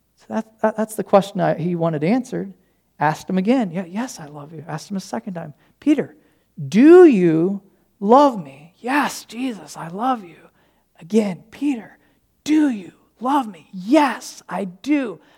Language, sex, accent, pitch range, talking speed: English, male, American, 200-255 Hz, 160 wpm